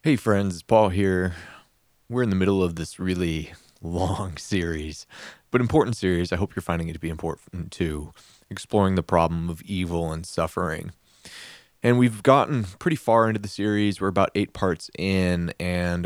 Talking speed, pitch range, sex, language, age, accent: 170 wpm, 85-100 Hz, male, English, 20-39, American